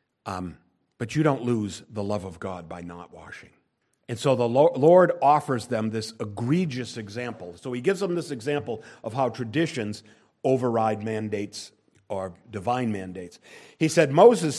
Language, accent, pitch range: English, American, 125-160 Hz